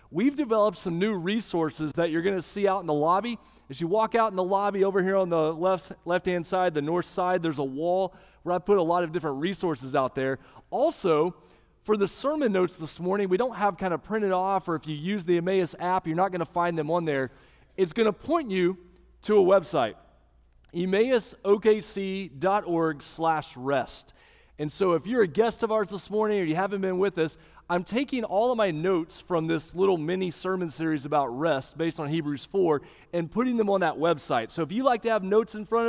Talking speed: 220 wpm